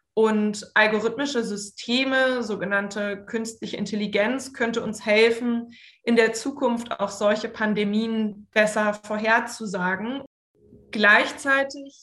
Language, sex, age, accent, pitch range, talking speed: German, female, 20-39, German, 200-230 Hz, 90 wpm